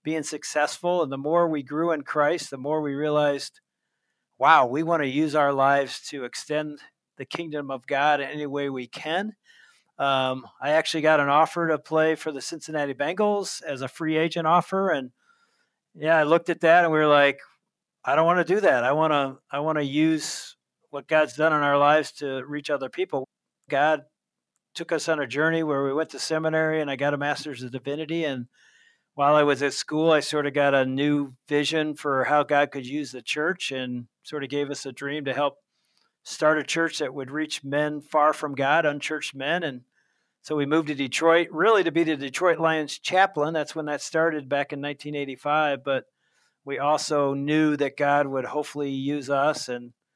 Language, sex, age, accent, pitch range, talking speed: English, male, 50-69, American, 140-160 Hz, 205 wpm